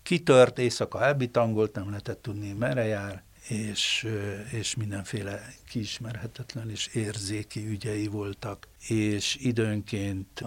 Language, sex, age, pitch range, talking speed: Hungarian, male, 60-79, 105-120 Hz, 105 wpm